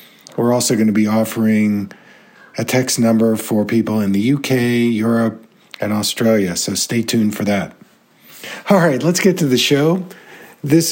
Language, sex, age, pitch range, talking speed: English, male, 50-69, 115-145 Hz, 160 wpm